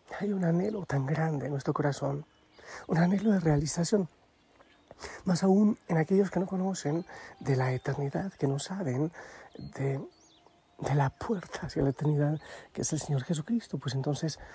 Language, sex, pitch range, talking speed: Spanish, male, 145-195 Hz, 160 wpm